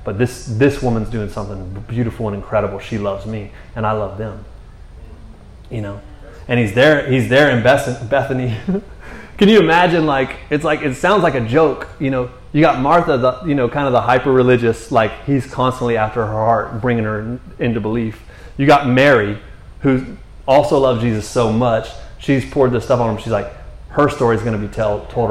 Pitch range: 110-140 Hz